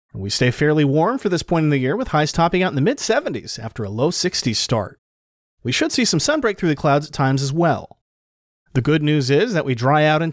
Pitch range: 125-165 Hz